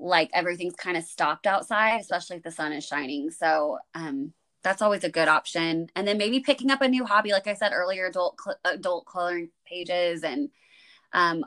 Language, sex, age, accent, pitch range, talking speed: English, female, 20-39, American, 165-210 Hz, 195 wpm